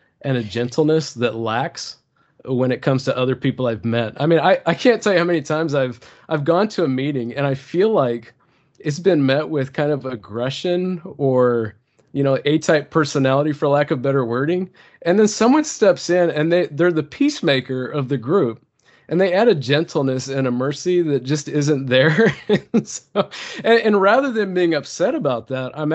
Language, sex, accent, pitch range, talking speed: English, male, American, 115-160 Hz, 200 wpm